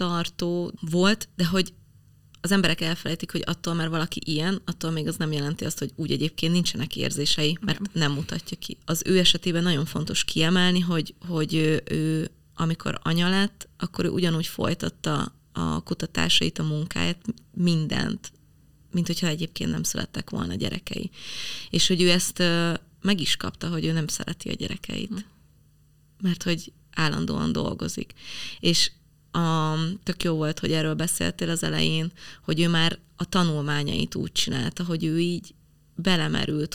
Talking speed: 155 wpm